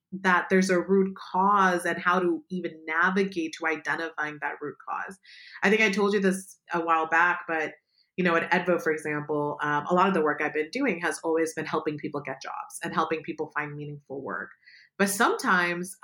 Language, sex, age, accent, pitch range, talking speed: English, female, 30-49, American, 165-195 Hz, 205 wpm